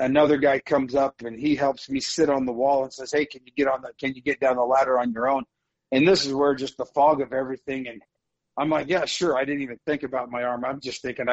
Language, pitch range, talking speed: English, 125-145 Hz, 280 wpm